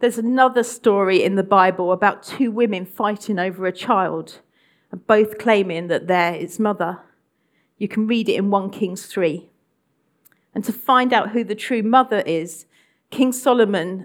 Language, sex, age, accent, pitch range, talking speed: English, female, 40-59, British, 185-235 Hz, 165 wpm